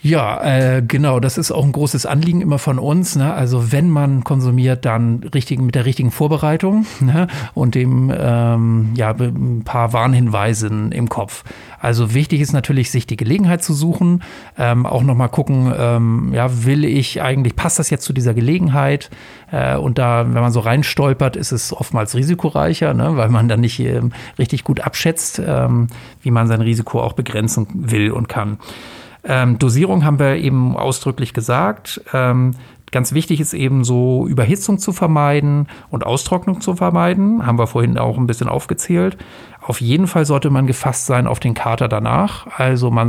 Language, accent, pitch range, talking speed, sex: German, German, 120-145 Hz, 175 wpm, male